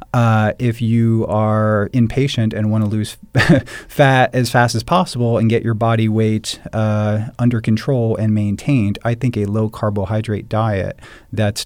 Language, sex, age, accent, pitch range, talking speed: English, male, 40-59, American, 105-120 Hz, 155 wpm